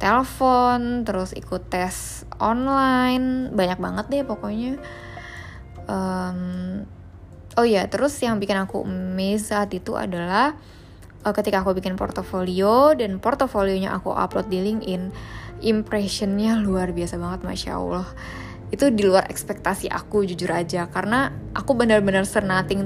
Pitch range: 180-210 Hz